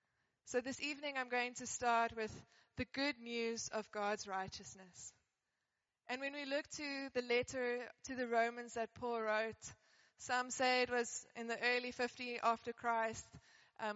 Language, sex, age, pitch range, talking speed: English, female, 20-39, 225-255 Hz, 165 wpm